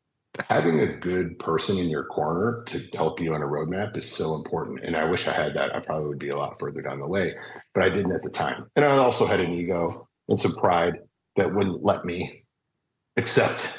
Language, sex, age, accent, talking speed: English, male, 40-59, American, 225 wpm